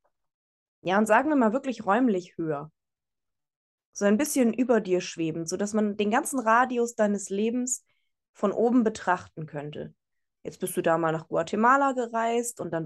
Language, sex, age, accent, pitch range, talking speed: German, female, 20-39, German, 180-230 Hz, 165 wpm